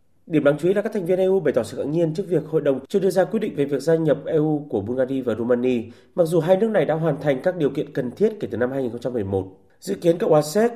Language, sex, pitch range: Vietnamese, male, 130-175 Hz